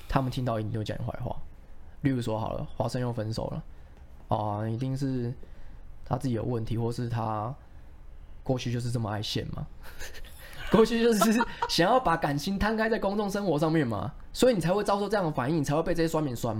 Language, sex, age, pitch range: Chinese, male, 20-39, 110-170 Hz